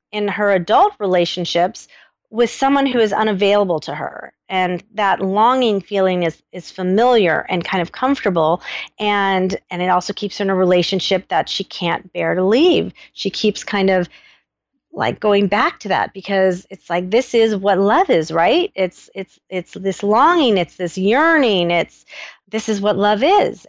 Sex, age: female, 40-59